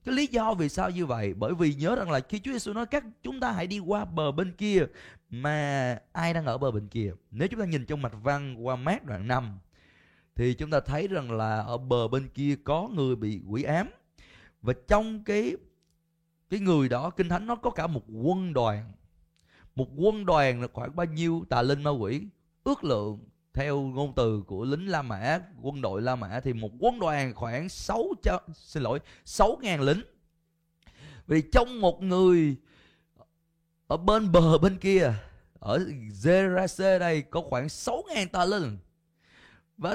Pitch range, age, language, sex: 130-200 Hz, 20-39, Vietnamese, male